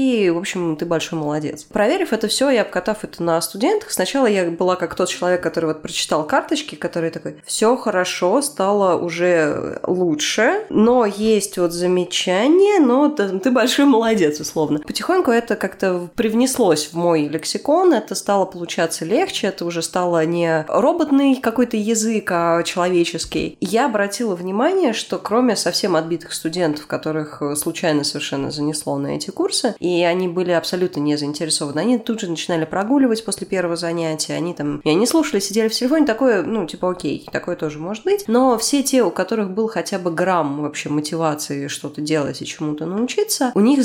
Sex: female